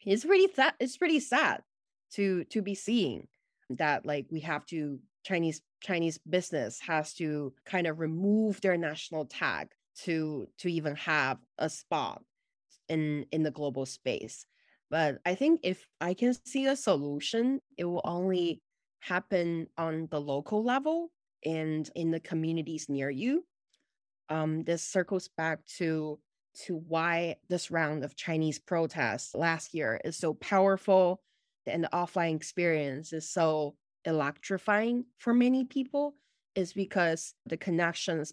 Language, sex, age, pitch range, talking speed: English, female, 20-39, 155-190 Hz, 145 wpm